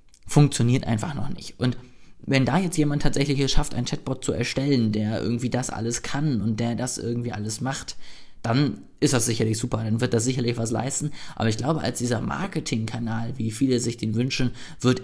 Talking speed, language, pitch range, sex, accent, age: 200 wpm, German, 115-140 Hz, male, German, 20-39